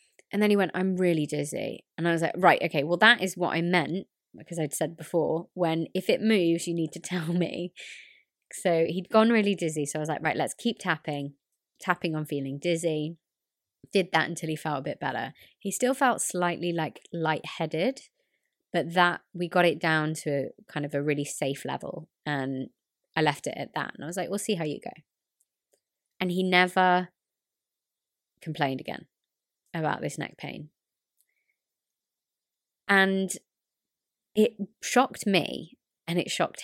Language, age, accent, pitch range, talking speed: English, 20-39, British, 155-190 Hz, 175 wpm